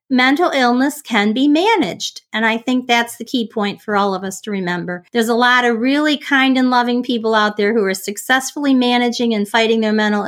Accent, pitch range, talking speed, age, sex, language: American, 200-250 Hz, 215 wpm, 40-59, female, English